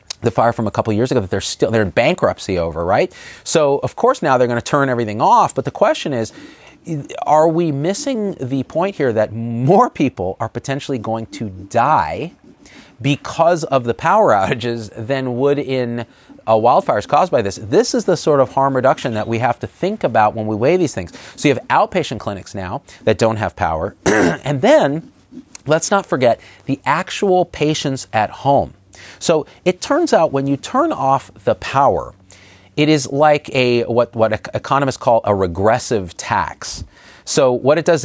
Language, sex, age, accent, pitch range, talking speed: English, male, 40-59, American, 105-145 Hz, 185 wpm